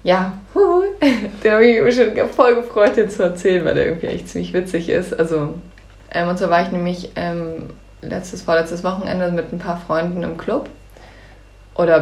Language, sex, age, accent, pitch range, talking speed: German, female, 20-39, German, 160-190 Hz, 180 wpm